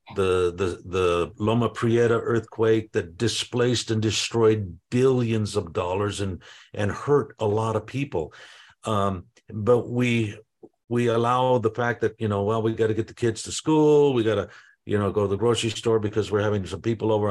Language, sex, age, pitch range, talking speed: English, male, 50-69, 105-125 Hz, 190 wpm